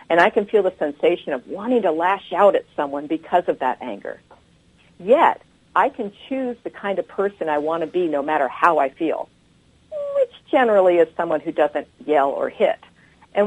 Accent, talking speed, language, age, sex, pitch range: American, 195 wpm, English, 50-69, female, 160-215 Hz